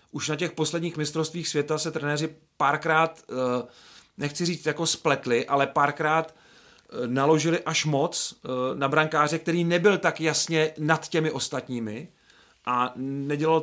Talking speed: 130 wpm